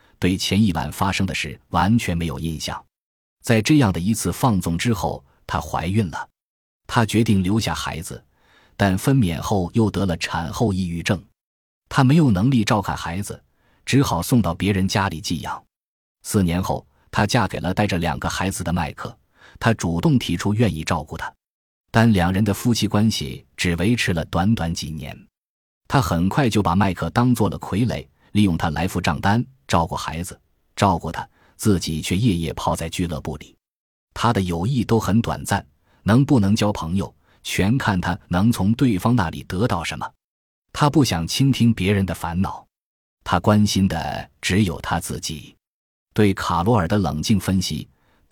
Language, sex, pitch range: Chinese, male, 85-110 Hz